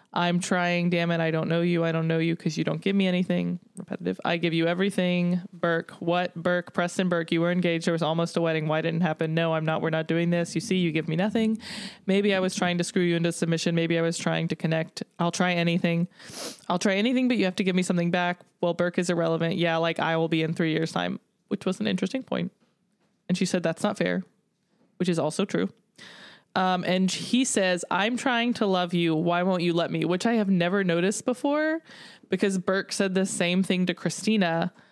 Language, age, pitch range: English, 20-39, 170-195 Hz